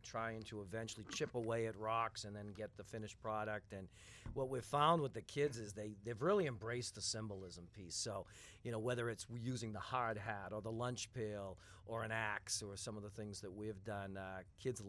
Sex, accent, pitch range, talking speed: male, American, 105-115 Hz, 220 wpm